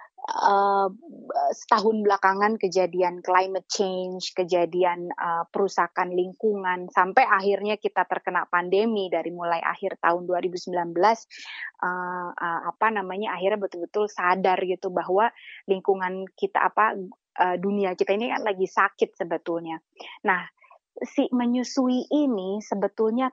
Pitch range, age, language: 190-230 Hz, 20-39, Indonesian